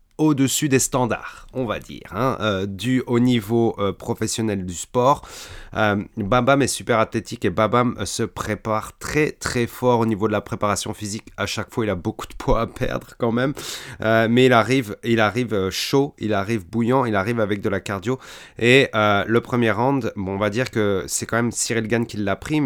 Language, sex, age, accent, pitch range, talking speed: French, male, 30-49, French, 105-125 Hz, 215 wpm